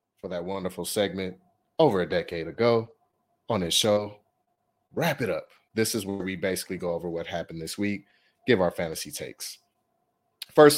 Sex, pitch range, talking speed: male, 90-115 Hz, 165 wpm